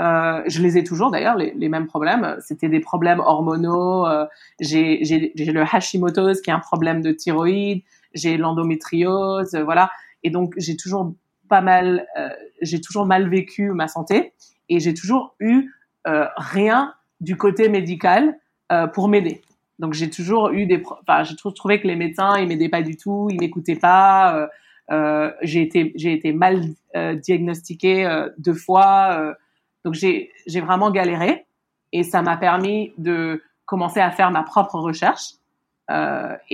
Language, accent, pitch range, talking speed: French, French, 160-195 Hz, 170 wpm